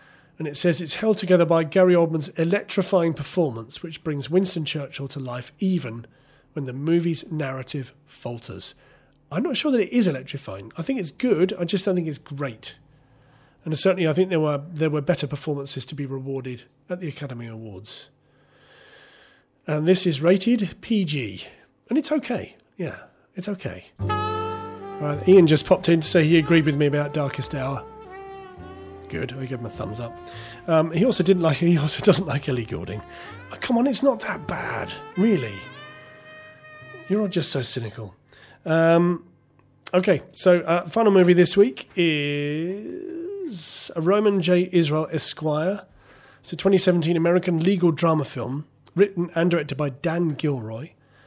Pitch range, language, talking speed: 135-180 Hz, English, 165 wpm